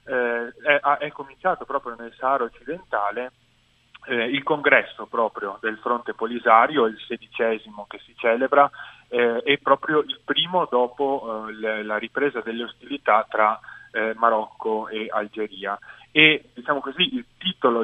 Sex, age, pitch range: male, 30-49, 110-135 Hz